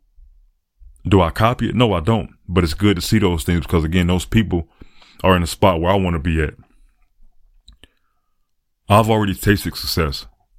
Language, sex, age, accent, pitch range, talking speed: English, male, 20-39, American, 80-95 Hz, 180 wpm